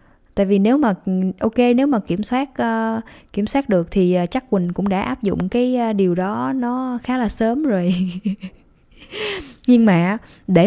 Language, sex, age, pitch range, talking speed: Vietnamese, female, 20-39, 170-230 Hz, 175 wpm